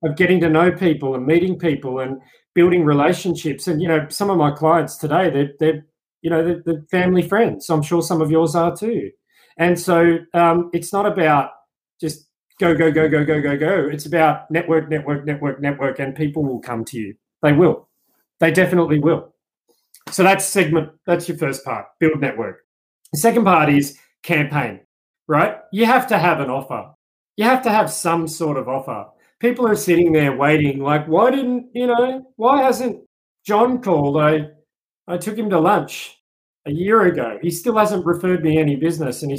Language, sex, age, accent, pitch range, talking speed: English, male, 30-49, Australian, 150-175 Hz, 190 wpm